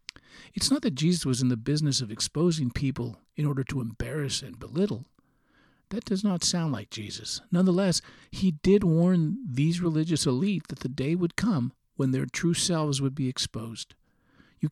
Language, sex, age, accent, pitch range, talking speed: English, male, 50-69, American, 125-165 Hz, 175 wpm